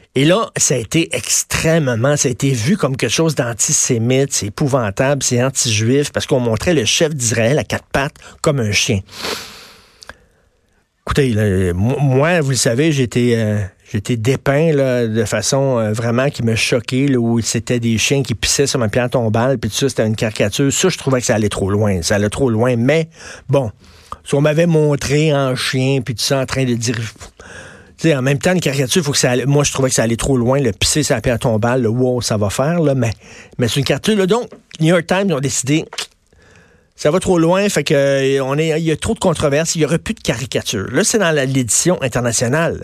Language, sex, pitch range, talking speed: French, male, 120-155 Hz, 220 wpm